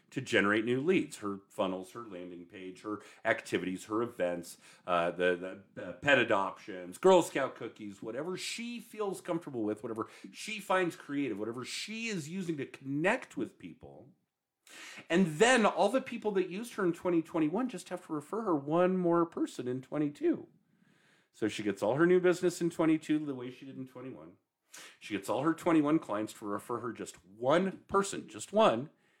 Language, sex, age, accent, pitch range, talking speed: English, male, 40-59, American, 130-185 Hz, 180 wpm